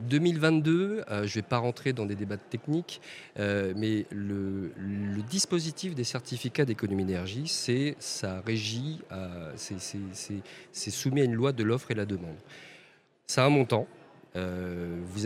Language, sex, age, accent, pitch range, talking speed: French, male, 40-59, French, 100-140 Hz, 140 wpm